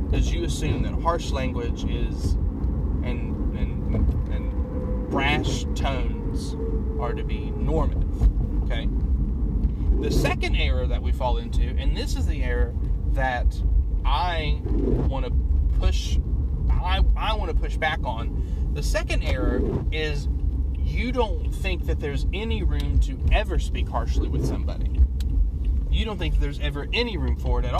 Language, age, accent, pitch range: English, 30-49, American, 70-90 Hz